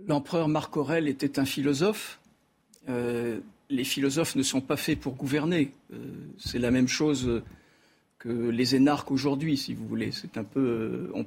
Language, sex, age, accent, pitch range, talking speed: French, male, 50-69, French, 130-160 Hz, 165 wpm